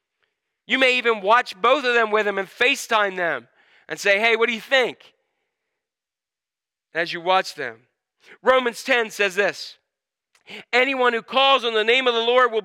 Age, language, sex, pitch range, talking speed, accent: 40-59, English, male, 165-255 Hz, 175 wpm, American